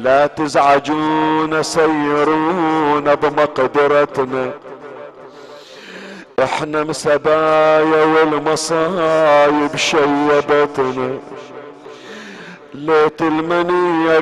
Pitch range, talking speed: 135-160 Hz, 40 wpm